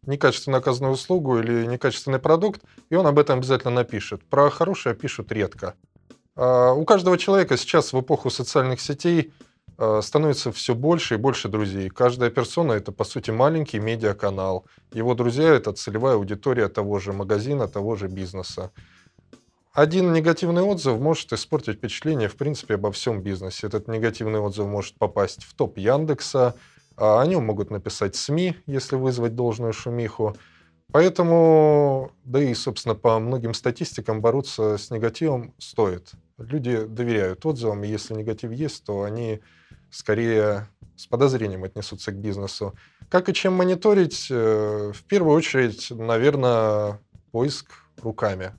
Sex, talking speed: male, 140 wpm